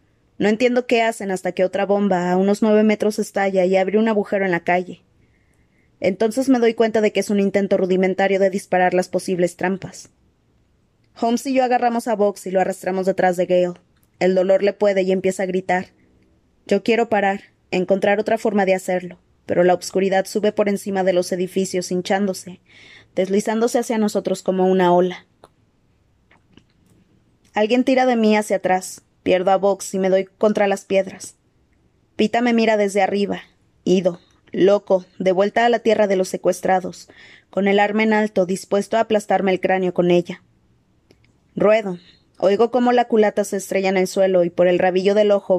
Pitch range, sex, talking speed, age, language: 185-210 Hz, female, 180 wpm, 20-39, Spanish